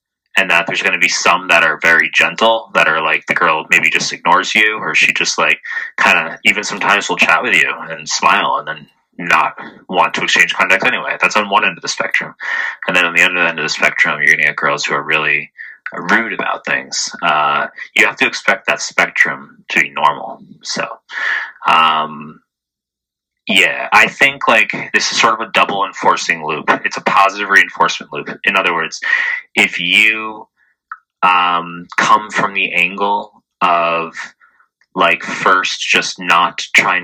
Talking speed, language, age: 185 wpm, English, 20-39